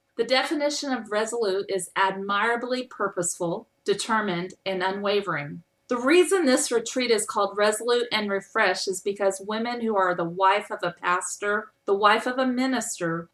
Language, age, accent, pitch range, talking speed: English, 40-59, American, 195-240 Hz, 155 wpm